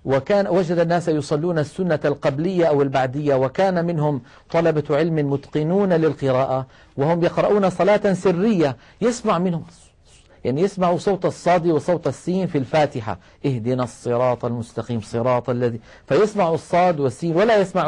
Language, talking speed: Arabic, 130 wpm